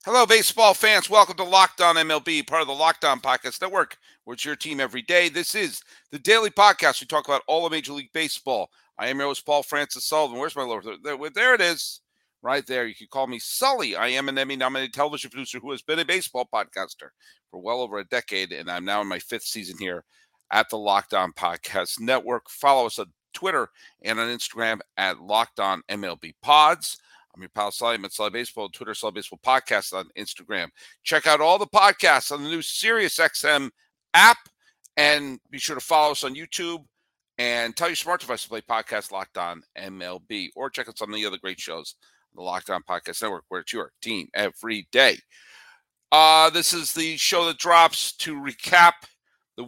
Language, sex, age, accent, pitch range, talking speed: English, male, 50-69, American, 125-165 Hz, 200 wpm